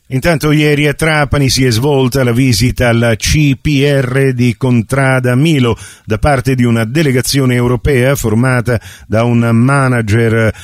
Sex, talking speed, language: male, 135 wpm, Italian